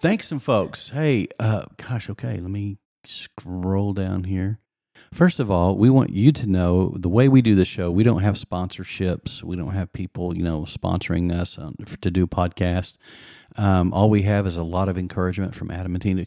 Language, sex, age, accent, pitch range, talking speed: English, male, 40-59, American, 90-115 Hz, 205 wpm